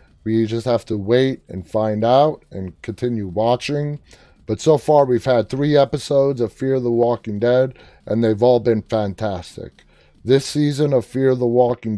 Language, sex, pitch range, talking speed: English, male, 110-135 Hz, 180 wpm